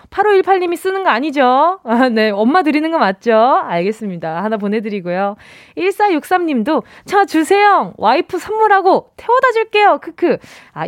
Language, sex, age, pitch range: Korean, female, 20-39, 205-320 Hz